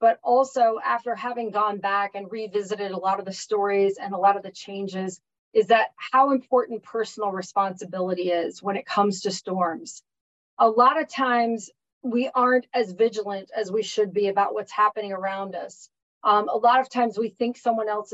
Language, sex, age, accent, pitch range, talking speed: English, female, 30-49, American, 200-235 Hz, 190 wpm